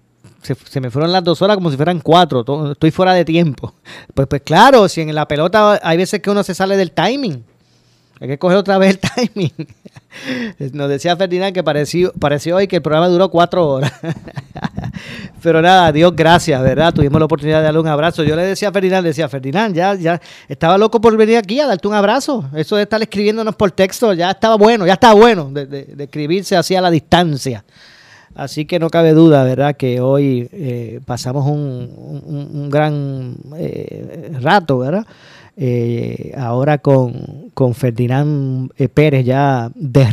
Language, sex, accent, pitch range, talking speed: Spanish, male, American, 140-185 Hz, 185 wpm